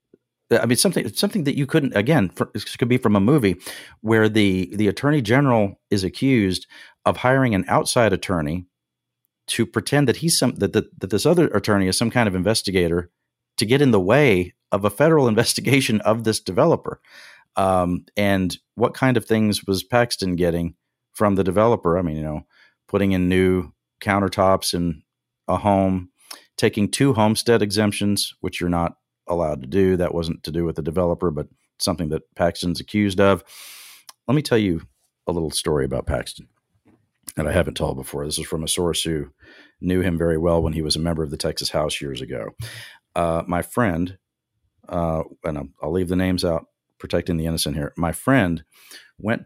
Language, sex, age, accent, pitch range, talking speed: English, male, 40-59, American, 85-110 Hz, 185 wpm